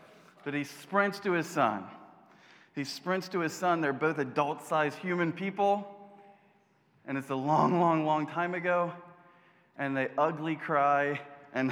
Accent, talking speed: American, 150 wpm